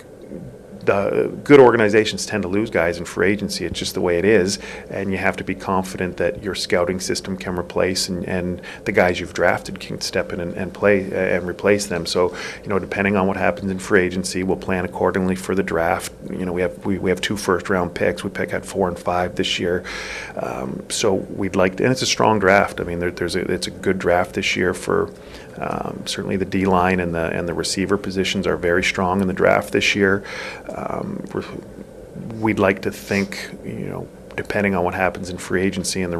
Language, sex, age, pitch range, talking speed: English, male, 40-59, 90-100 Hz, 225 wpm